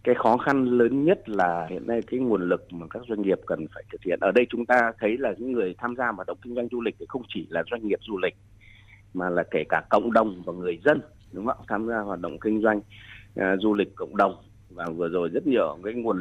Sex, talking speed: male, 265 wpm